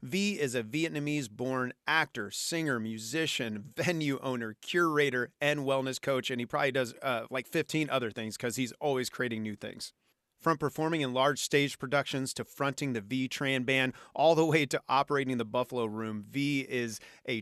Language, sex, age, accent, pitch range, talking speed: English, male, 30-49, American, 115-140 Hz, 180 wpm